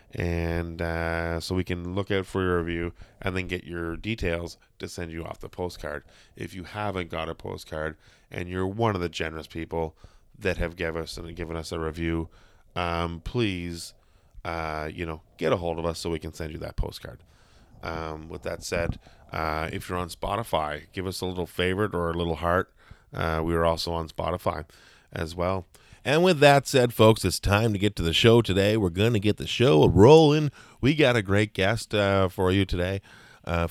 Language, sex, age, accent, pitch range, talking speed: English, male, 20-39, American, 85-120 Hz, 200 wpm